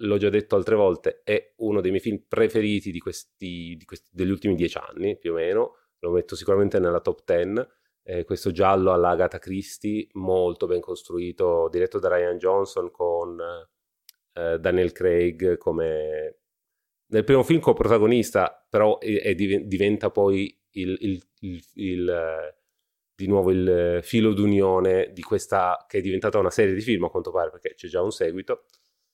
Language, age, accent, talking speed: Italian, 30-49, native, 170 wpm